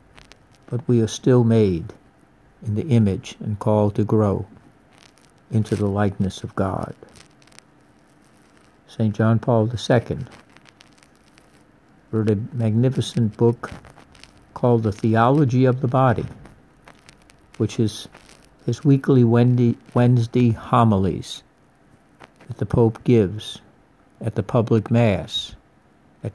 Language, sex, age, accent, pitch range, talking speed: English, male, 60-79, American, 105-120 Hz, 105 wpm